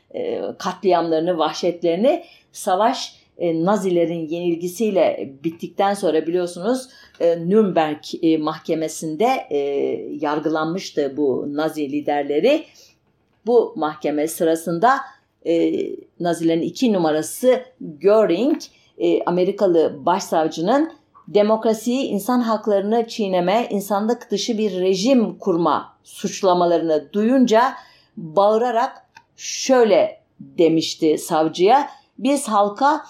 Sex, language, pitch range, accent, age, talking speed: female, German, 170-245 Hz, Turkish, 50-69, 85 wpm